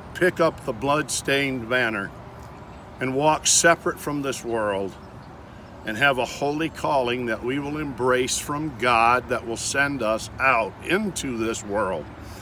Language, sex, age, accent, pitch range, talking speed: English, male, 50-69, American, 110-160 Hz, 145 wpm